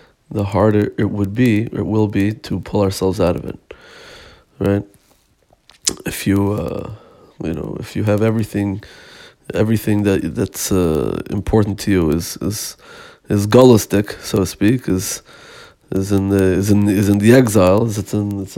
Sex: male